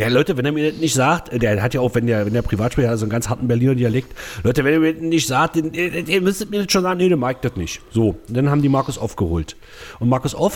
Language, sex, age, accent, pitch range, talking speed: German, male, 40-59, German, 110-155 Hz, 285 wpm